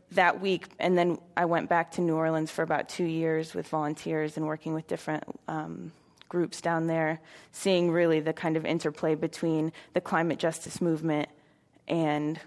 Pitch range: 155-170 Hz